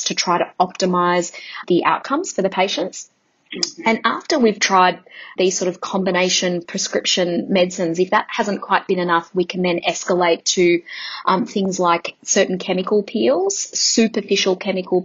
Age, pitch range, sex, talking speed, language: 20-39, 175-195 Hz, female, 150 wpm, English